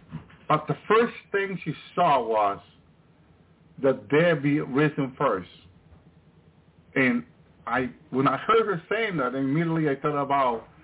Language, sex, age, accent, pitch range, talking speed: English, male, 50-69, American, 135-165 Hz, 135 wpm